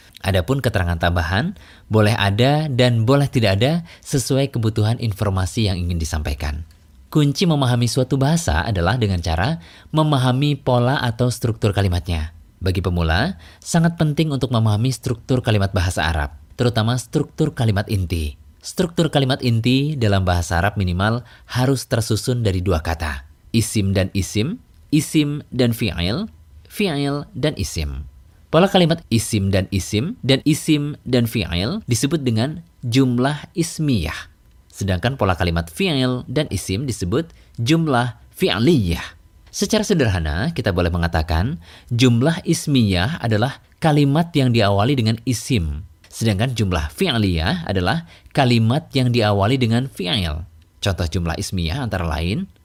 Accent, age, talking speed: native, 20-39, 125 wpm